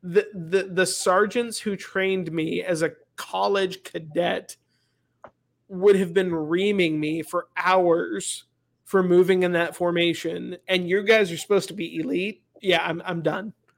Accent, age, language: American, 30-49, English